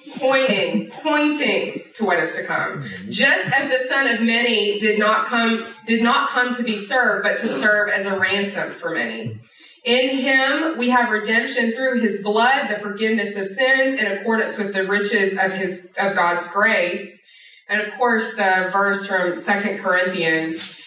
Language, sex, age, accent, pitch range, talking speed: English, female, 20-39, American, 185-240 Hz, 175 wpm